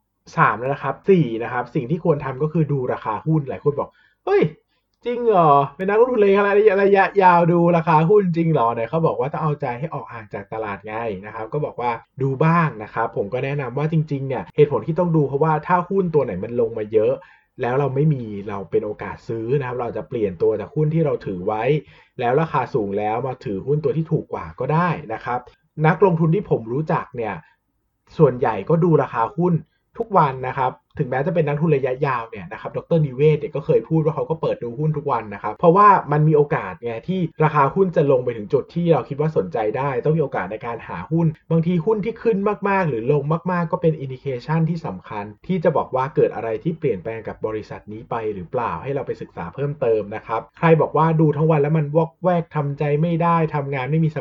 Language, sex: Thai, male